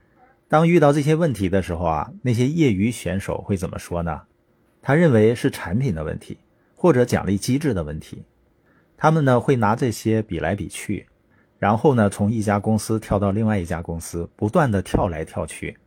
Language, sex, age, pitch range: Chinese, male, 50-69, 100-130 Hz